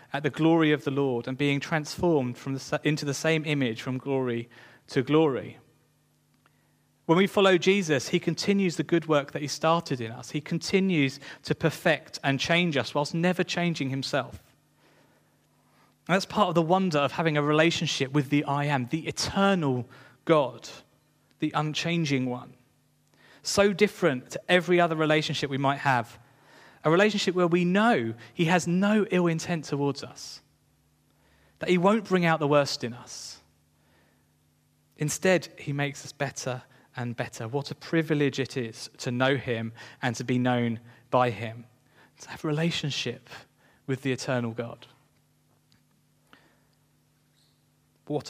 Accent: British